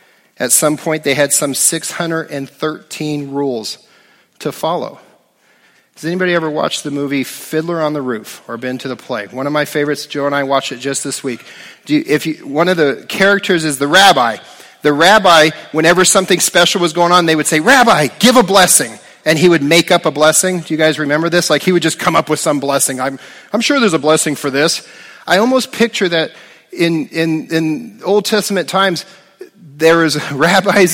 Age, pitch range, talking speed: 40-59, 135-175 Hz, 205 wpm